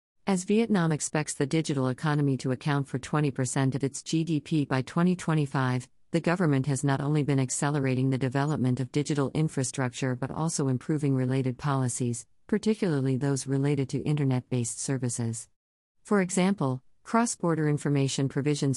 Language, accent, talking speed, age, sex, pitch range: English, American, 135 wpm, 50-69, female, 130-155 Hz